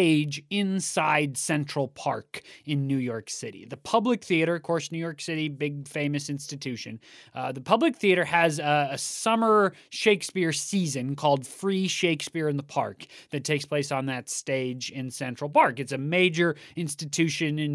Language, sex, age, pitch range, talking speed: English, male, 20-39, 140-165 Hz, 170 wpm